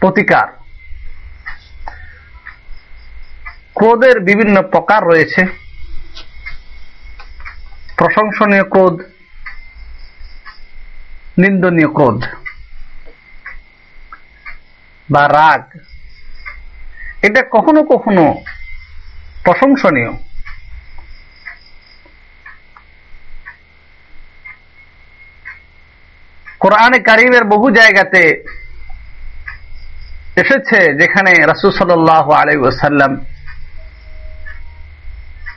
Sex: male